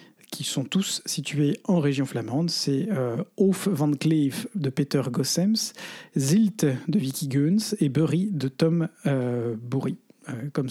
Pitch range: 140-175 Hz